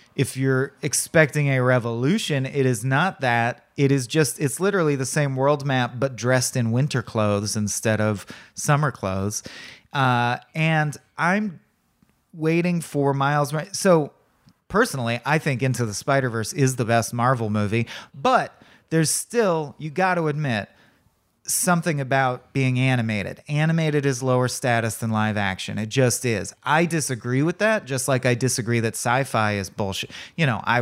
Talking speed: 160 wpm